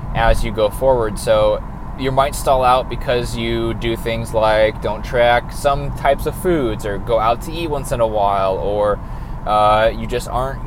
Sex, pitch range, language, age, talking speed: male, 110-140 Hz, English, 20-39, 190 wpm